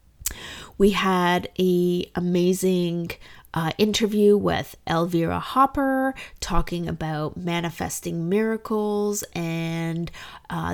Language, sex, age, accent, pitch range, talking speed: English, female, 20-39, American, 170-205 Hz, 85 wpm